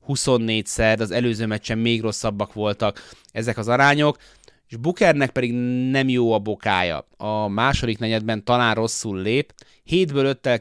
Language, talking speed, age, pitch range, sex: Hungarian, 155 wpm, 30-49, 105-125 Hz, male